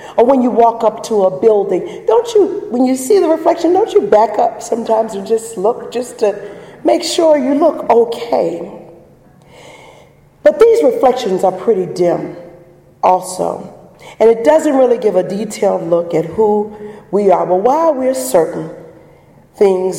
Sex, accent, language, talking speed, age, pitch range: female, American, English, 160 wpm, 40-59, 180-250 Hz